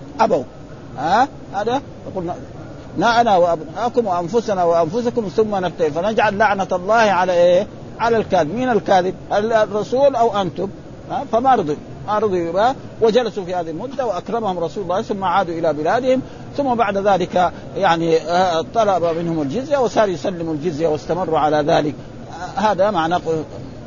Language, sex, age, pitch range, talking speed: Arabic, male, 50-69, 160-215 Hz, 135 wpm